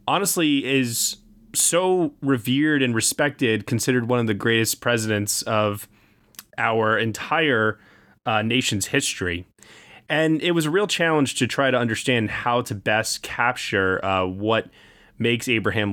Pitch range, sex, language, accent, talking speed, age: 105-135 Hz, male, English, American, 135 wpm, 20-39